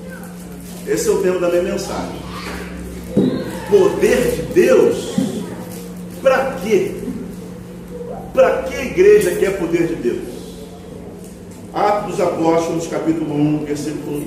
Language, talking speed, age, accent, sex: Portuguese, 110 wpm, 40-59, Brazilian, male